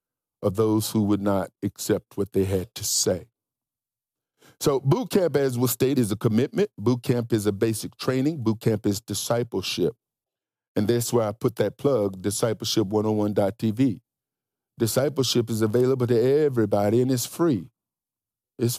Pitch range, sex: 115-150 Hz, male